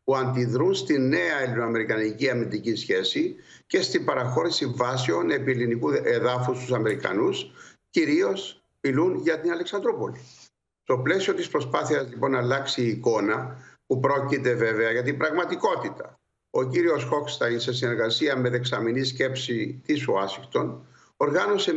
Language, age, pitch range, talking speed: Greek, 60-79, 130-195 Hz, 130 wpm